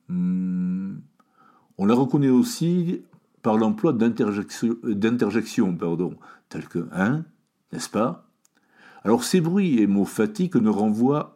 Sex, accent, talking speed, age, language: male, French, 135 wpm, 60-79, French